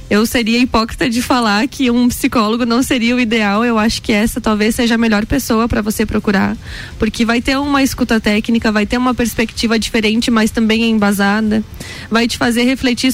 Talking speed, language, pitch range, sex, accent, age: 190 wpm, Portuguese, 225-265 Hz, female, Brazilian, 10-29